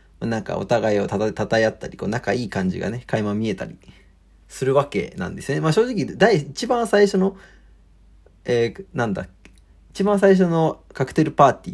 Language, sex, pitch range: Japanese, male, 100-160 Hz